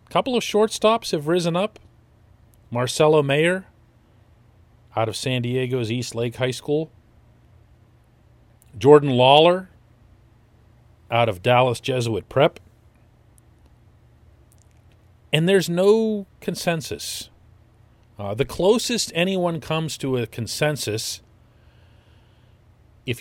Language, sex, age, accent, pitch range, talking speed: English, male, 40-59, American, 105-130 Hz, 95 wpm